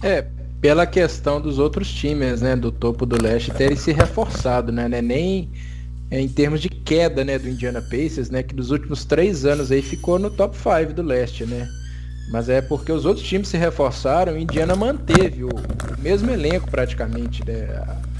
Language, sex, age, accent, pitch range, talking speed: Portuguese, male, 20-39, Brazilian, 115-160 Hz, 190 wpm